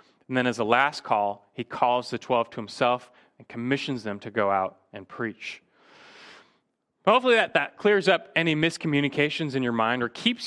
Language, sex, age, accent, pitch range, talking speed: English, male, 30-49, American, 120-180 Hz, 185 wpm